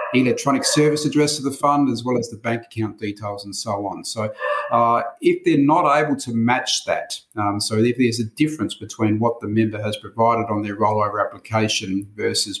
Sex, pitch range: male, 105-120 Hz